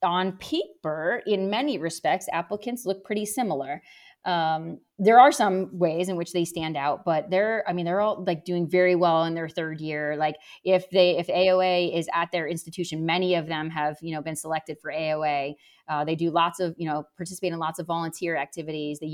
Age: 30-49